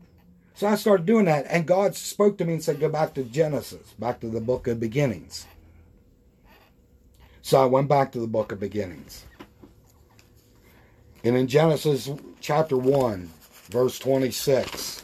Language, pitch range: English, 115-135 Hz